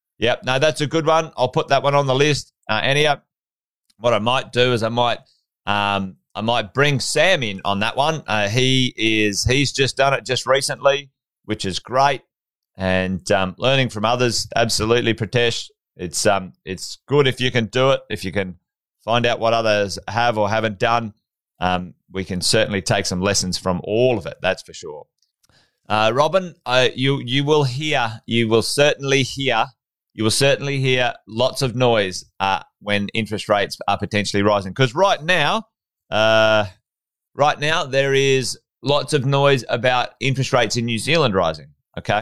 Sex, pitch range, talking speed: male, 105-135 Hz, 180 wpm